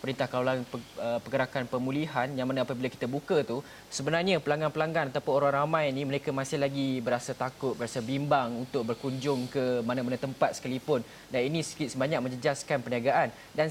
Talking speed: 160 wpm